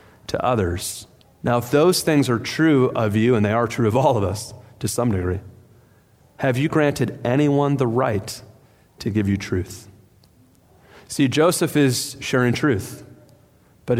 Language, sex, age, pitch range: English, male, 30-49, 110-135 Hz